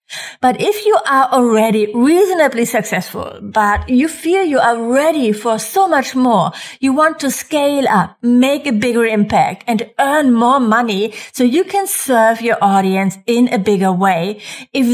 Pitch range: 210-270 Hz